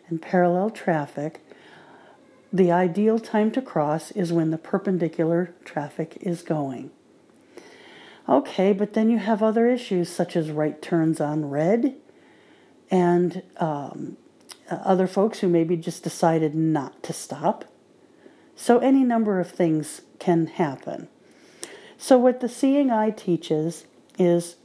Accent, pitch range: American, 170-230 Hz